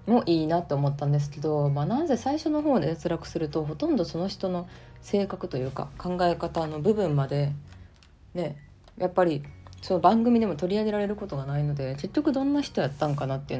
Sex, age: female, 20-39